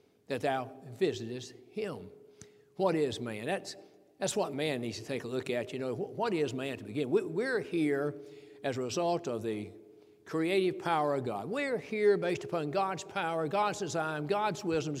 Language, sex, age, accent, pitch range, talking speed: English, male, 60-79, American, 145-210 Hz, 185 wpm